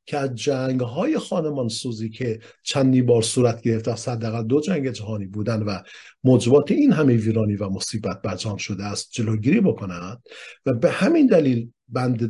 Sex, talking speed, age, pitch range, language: male, 155 wpm, 50-69, 115-170 Hz, Persian